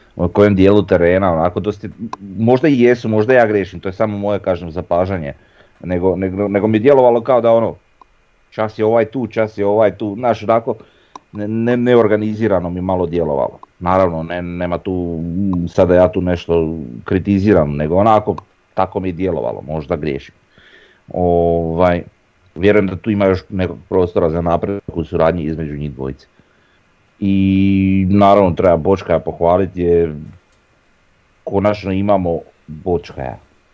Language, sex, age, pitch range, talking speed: Croatian, male, 30-49, 80-100 Hz, 150 wpm